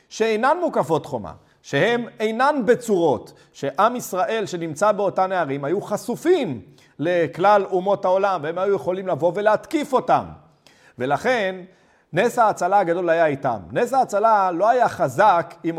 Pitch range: 160-210 Hz